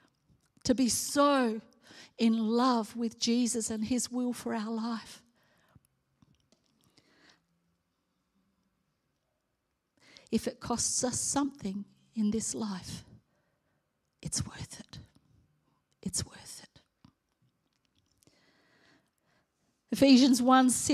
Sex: female